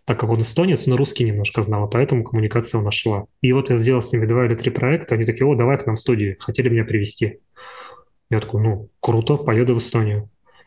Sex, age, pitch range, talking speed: male, 20-39, 110-130 Hz, 230 wpm